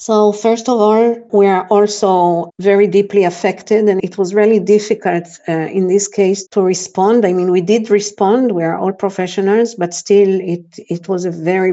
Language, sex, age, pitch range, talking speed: Czech, female, 50-69, 175-205 Hz, 190 wpm